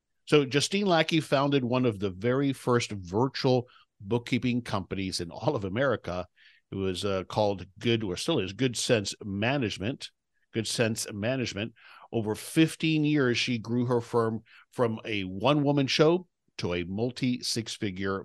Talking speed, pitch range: 145 wpm, 100-125 Hz